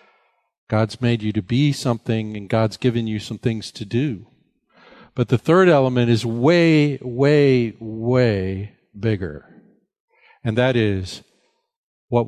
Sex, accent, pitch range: male, American, 105-150 Hz